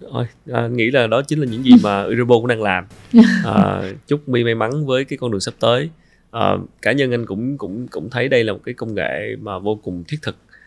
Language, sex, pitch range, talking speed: Vietnamese, male, 100-125 Hz, 245 wpm